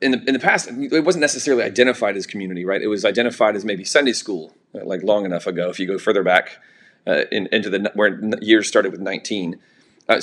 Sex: male